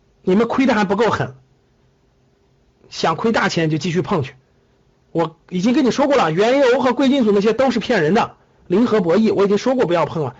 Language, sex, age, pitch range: Chinese, male, 50-69, 165-235 Hz